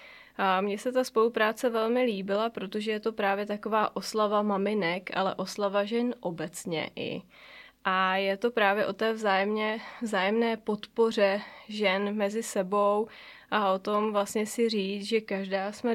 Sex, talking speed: female, 145 wpm